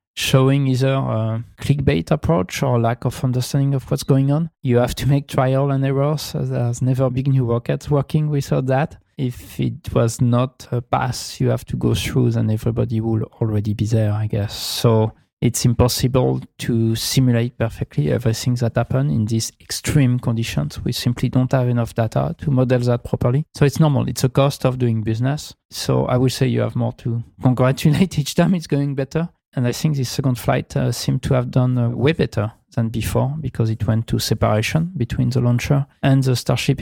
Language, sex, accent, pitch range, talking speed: English, male, French, 115-140 Hz, 200 wpm